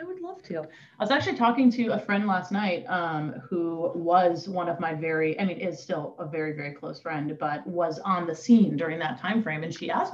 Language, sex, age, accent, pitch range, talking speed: English, female, 30-49, American, 155-205 Hz, 245 wpm